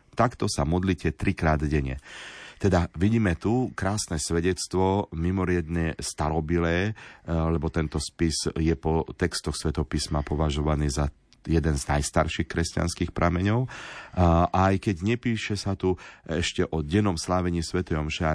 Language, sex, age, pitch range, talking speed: Slovak, male, 40-59, 75-90 Hz, 130 wpm